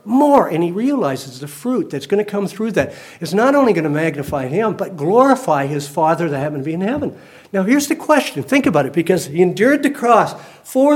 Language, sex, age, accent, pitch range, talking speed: English, male, 60-79, American, 145-225 Hz, 230 wpm